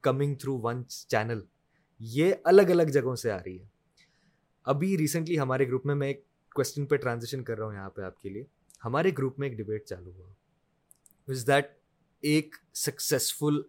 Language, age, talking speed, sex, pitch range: Urdu, 20-39, 180 wpm, male, 115-155 Hz